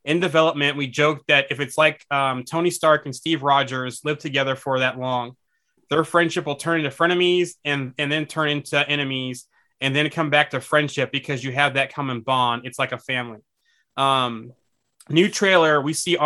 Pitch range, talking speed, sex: 130-155 Hz, 190 wpm, male